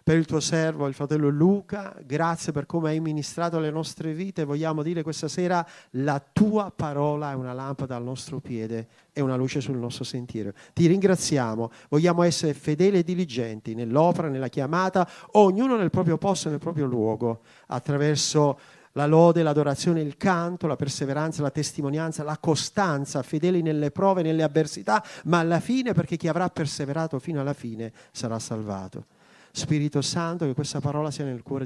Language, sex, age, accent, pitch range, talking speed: Italian, male, 40-59, native, 125-165 Hz, 165 wpm